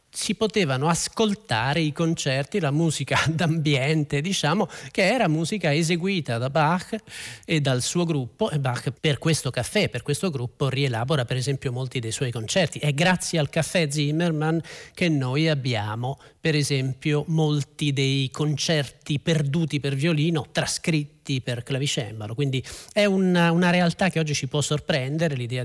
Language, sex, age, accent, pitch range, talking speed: Italian, male, 40-59, native, 140-185 Hz, 150 wpm